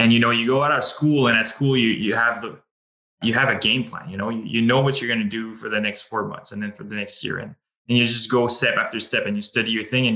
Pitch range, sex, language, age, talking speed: 105-120 Hz, male, English, 20-39, 325 wpm